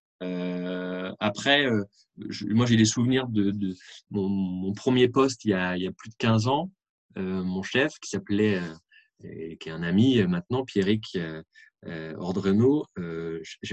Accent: French